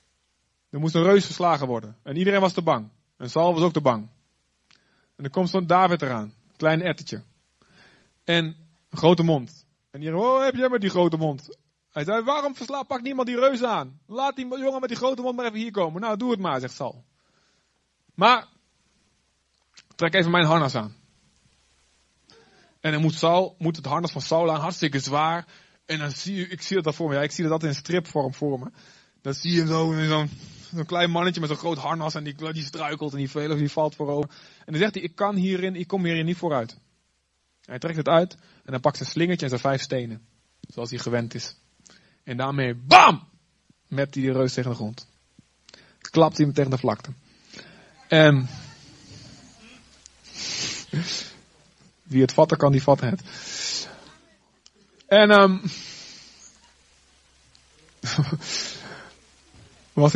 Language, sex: Dutch, male